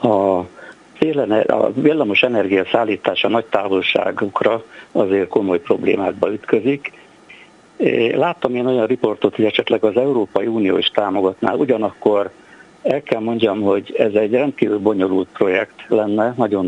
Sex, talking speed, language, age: male, 125 wpm, Hungarian, 60-79